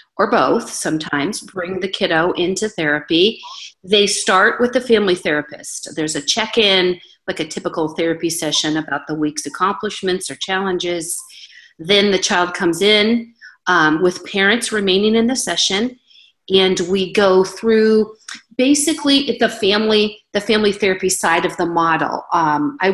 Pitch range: 165-215 Hz